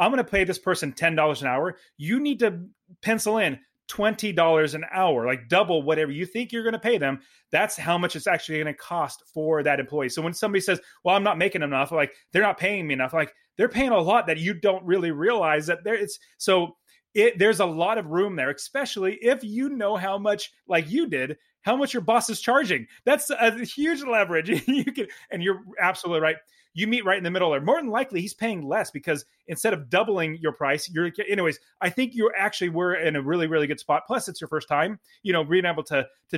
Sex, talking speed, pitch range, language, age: male, 235 wpm, 160-210 Hz, English, 30-49